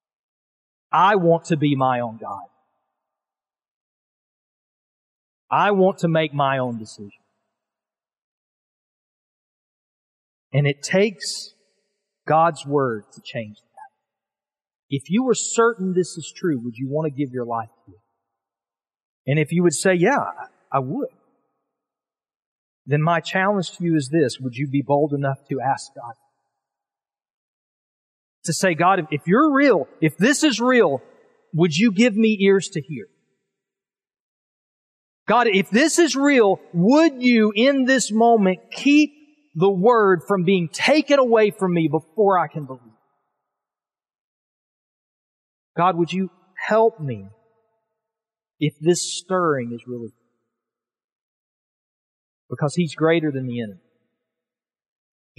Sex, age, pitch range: male, 40-59, 135-215 Hz